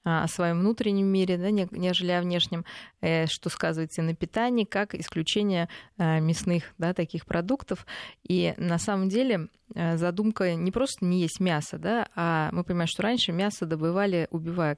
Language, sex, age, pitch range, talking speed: Russian, female, 20-39, 165-205 Hz, 155 wpm